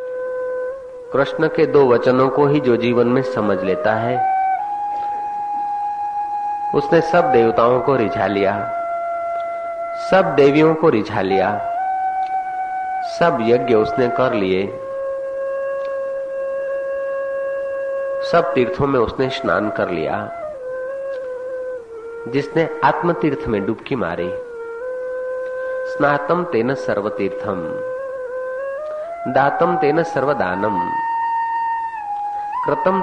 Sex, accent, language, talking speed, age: male, native, Hindi, 85 wpm, 50-69